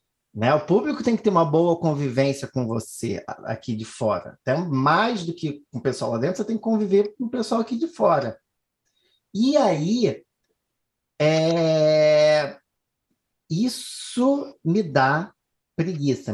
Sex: male